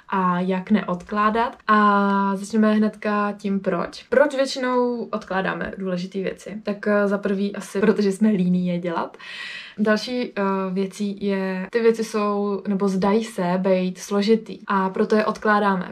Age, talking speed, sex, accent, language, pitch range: 20-39, 140 wpm, female, native, Czech, 190-215 Hz